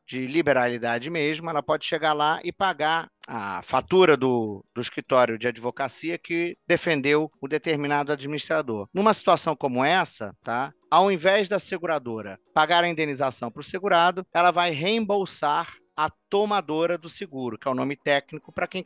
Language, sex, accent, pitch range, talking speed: Portuguese, male, Brazilian, 135-180 Hz, 160 wpm